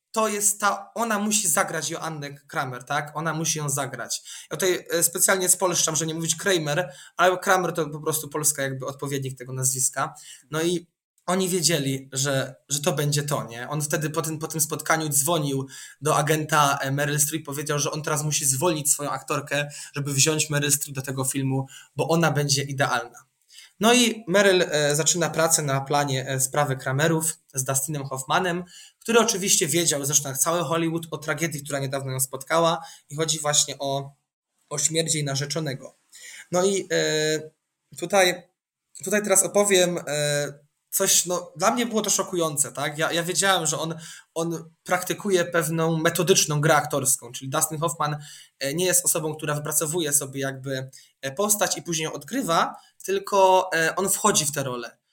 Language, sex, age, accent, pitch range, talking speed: Polish, male, 20-39, native, 145-180 Hz, 165 wpm